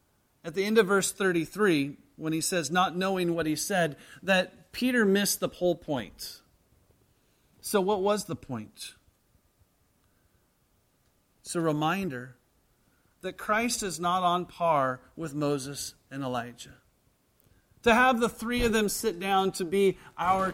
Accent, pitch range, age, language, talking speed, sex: American, 125-190 Hz, 40-59, English, 145 wpm, male